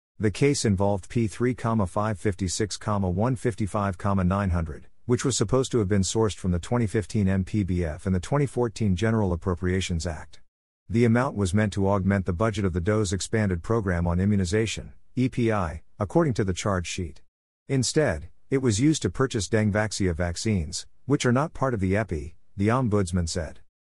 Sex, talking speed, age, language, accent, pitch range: male, 150 wpm, 50-69, English, American, 90-115 Hz